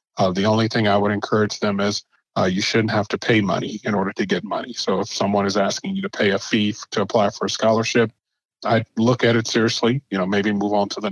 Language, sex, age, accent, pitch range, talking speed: English, male, 40-59, American, 100-115 Hz, 265 wpm